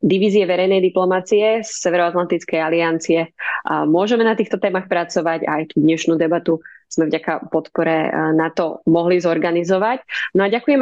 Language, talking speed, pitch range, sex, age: Slovak, 145 wpm, 165-205 Hz, female, 20-39